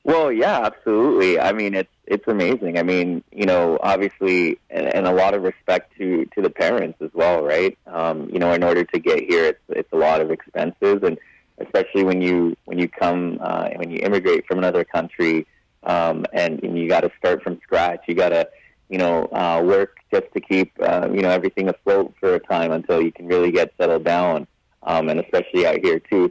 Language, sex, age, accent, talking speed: English, male, 20-39, American, 210 wpm